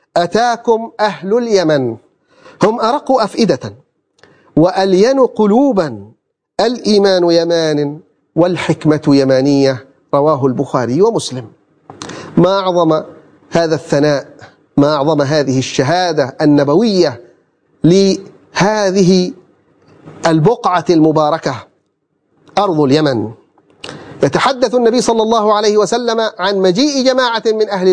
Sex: male